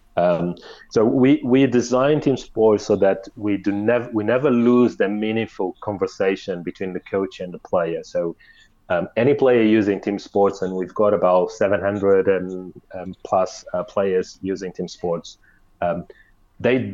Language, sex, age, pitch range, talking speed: English, male, 30-49, 95-120 Hz, 165 wpm